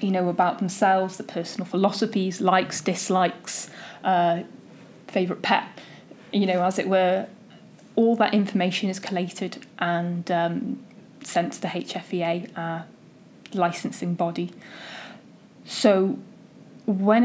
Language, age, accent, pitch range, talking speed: English, 20-39, British, 175-205 Hz, 115 wpm